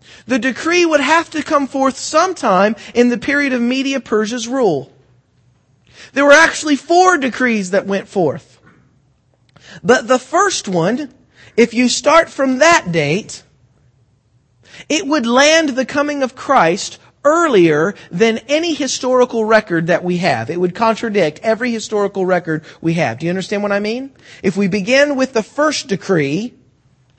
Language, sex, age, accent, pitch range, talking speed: English, male, 40-59, American, 190-275 Hz, 150 wpm